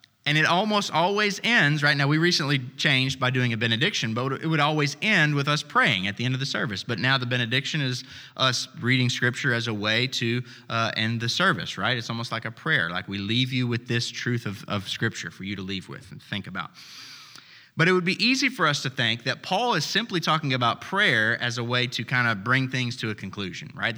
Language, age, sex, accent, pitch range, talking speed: English, 20-39, male, American, 120-155 Hz, 240 wpm